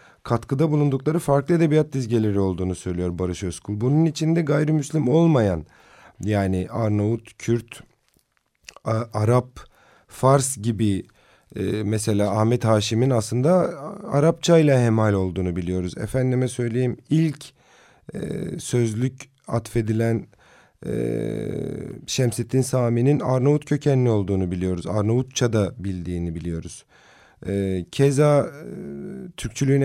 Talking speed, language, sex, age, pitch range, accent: 90 wpm, Turkish, male, 40-59, 100-140 Hz, native